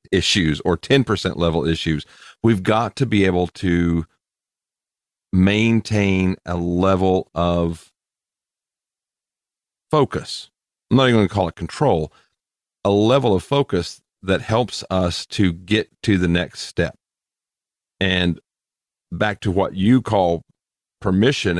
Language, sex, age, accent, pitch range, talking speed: English, male, 40-59, American, 85-105 Hz, 120 wpm